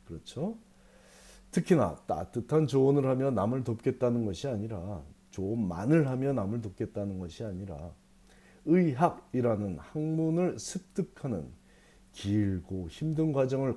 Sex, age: male, 40-59